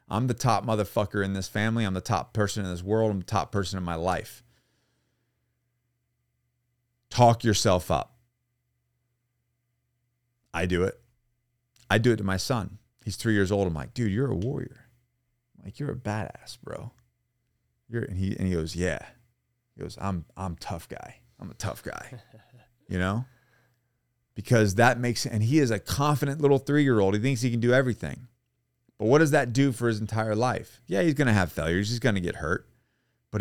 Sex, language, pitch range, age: male, English, 100-120 Hz, 30-49